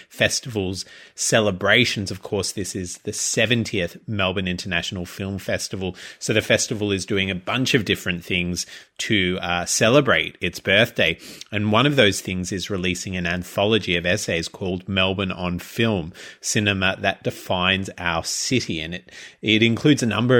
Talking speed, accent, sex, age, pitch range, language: 155 wpm, Australian, male, 30-49, 95-115 Hz, English